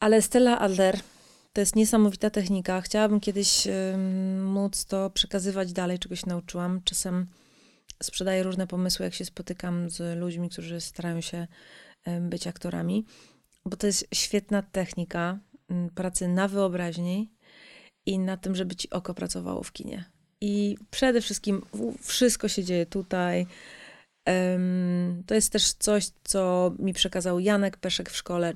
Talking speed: 135 wpm